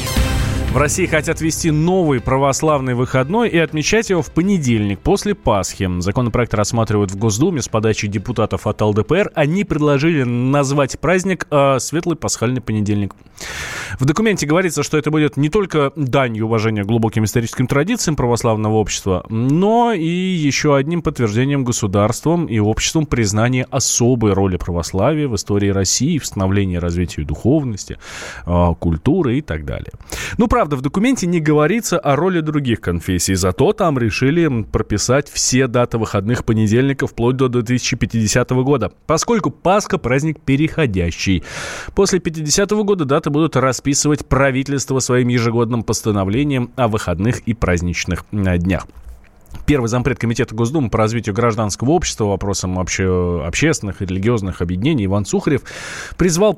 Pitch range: 105-150 Hz